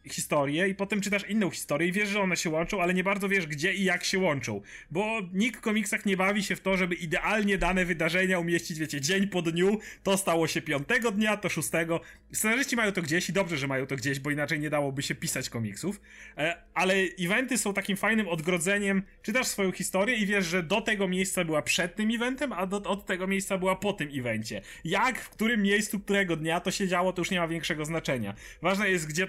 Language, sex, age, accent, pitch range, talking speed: Polish, male, 30-49, native, 170-200 Hz, 225 wpm